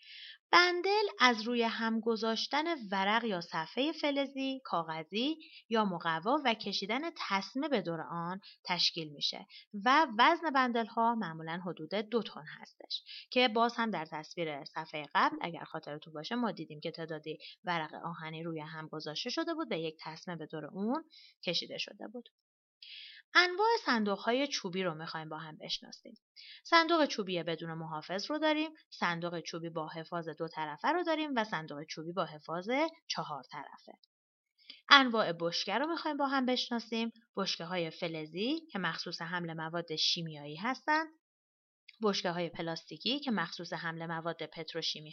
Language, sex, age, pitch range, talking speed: Persian, female, 30-49, 165-255 Hz, 145 wpm